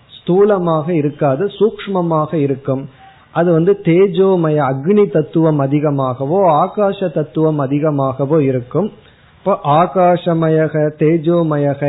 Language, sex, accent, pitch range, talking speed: Tamil, male, native, 140-180 Hz, 85 wpm